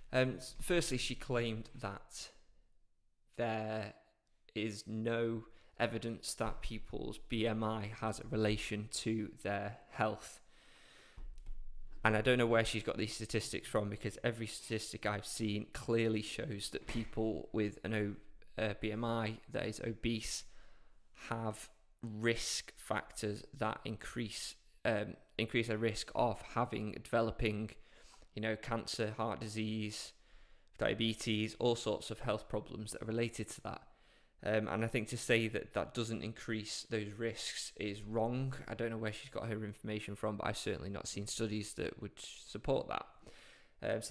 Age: 20-39